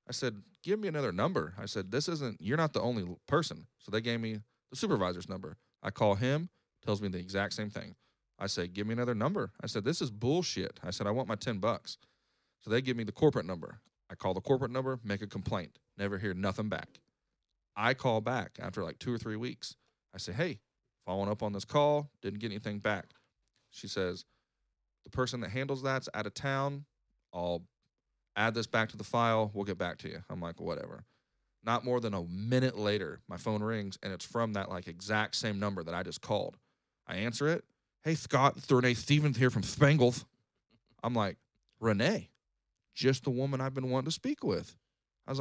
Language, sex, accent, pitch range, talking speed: English, male, American, 105-130 Hz, 210 wpm